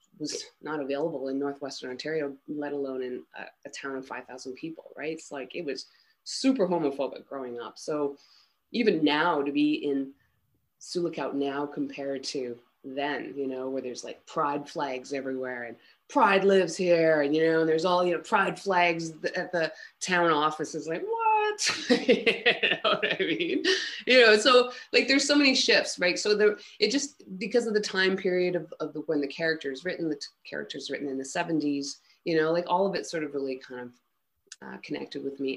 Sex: female